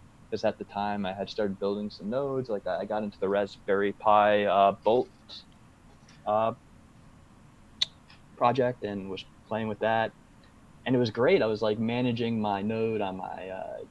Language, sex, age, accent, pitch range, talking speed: English, male, 20-39, American, 100-120 Hz, 170 wpm